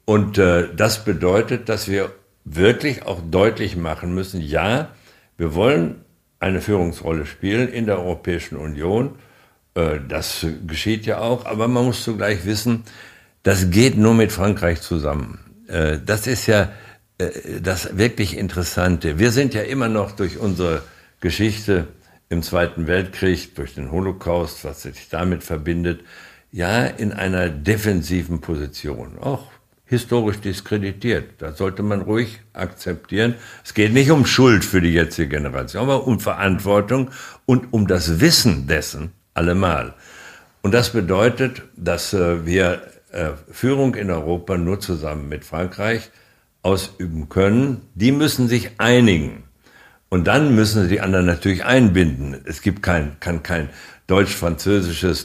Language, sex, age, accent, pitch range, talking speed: German, male, 60-79, German, 85-110 Hz, 135 wpm